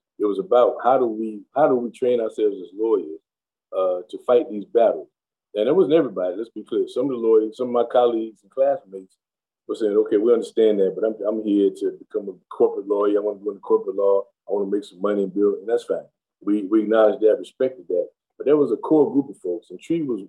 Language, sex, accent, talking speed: English, male, American, 250 wpm